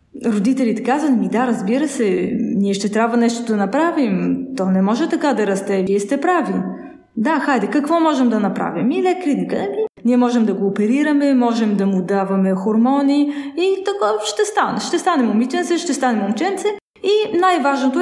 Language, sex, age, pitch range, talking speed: Bulgarian, female, 20-39, 210-295 Hz, 170 wpm